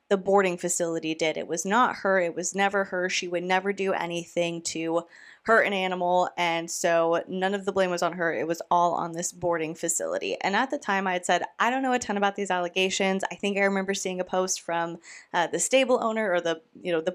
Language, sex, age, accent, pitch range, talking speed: English, female, 20-39, American, 175-215 Hz, 240 wpm